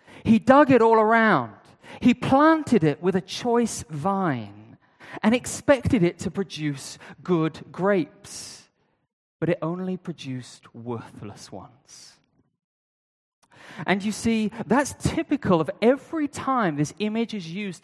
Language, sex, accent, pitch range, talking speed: English, male, British, 145-230 Hz, 125 wpm